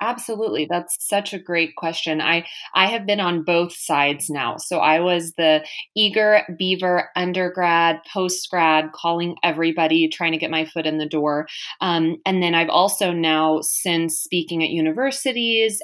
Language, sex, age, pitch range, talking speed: English, female, 20-39, 160-210 Hz, 160 wpm